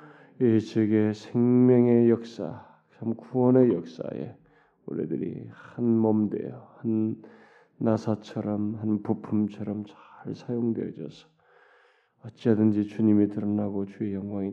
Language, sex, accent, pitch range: Korean, male, native, 105-120 Hz